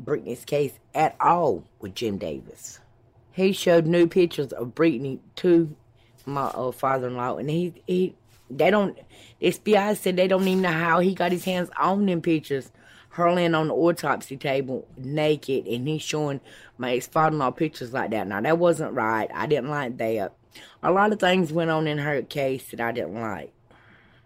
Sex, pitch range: female, 115-165 Hz